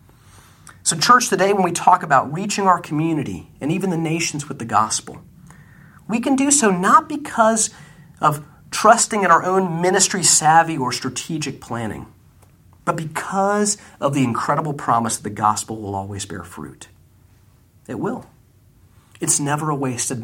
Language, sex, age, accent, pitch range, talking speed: English, male, 40-59, American, 115-185 Hz, 155 wpm